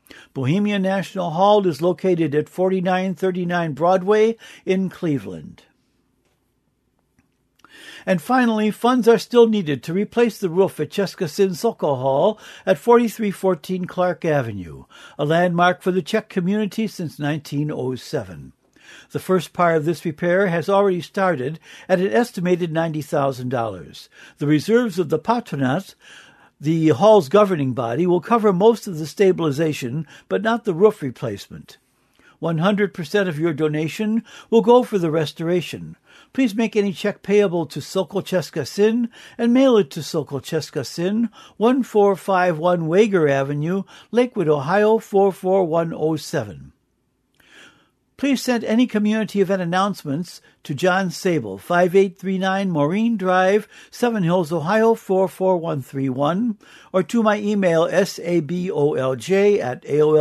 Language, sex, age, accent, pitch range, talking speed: English, male, 60-79, American, 155-205 Hz, 120 wpm